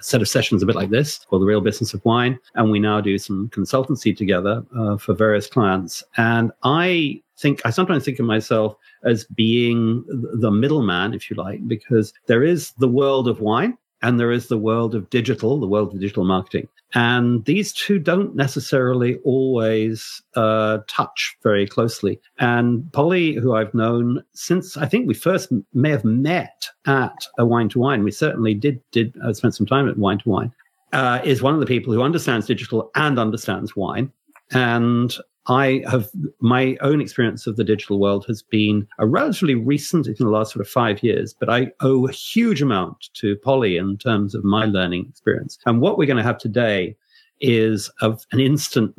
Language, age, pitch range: English, 50-69, 110-135 Hz